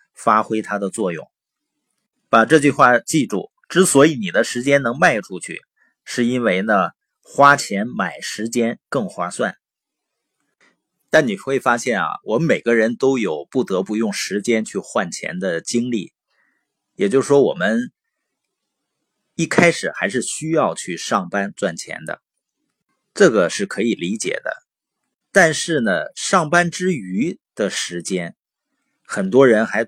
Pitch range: 110-160 Hz